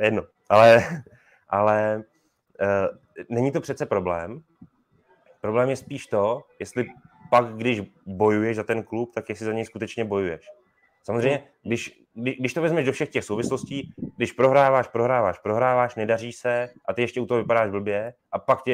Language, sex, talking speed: Czech, male, 160 wpm